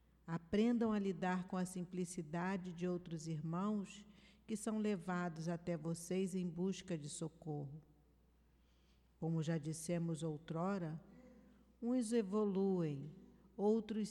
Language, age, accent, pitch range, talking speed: Portuguese, 50-69, Brazilian, 165-195 Hz, 105 wpm